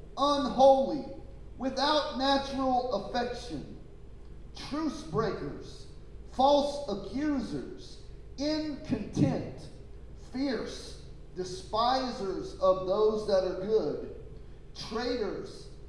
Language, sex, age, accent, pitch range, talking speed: English, male, 40-59, American, 190-270 Hz, 65 wpm